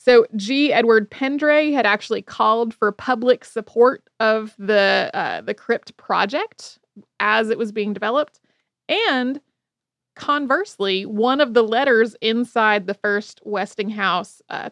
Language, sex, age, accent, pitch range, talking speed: English, female, 20-39, American, 205-255 Hz, 130 wpm